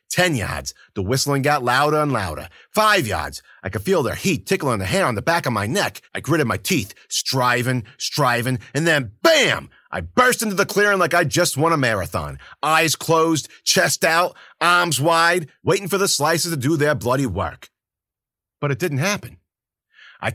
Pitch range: 105-165 Hz